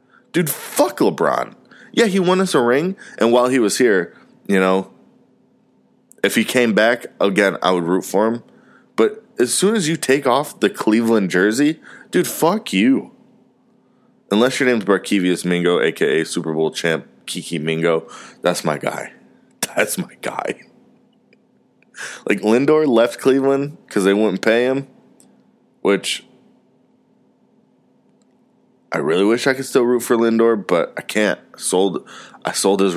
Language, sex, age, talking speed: English, male, 20-39, 150 wpm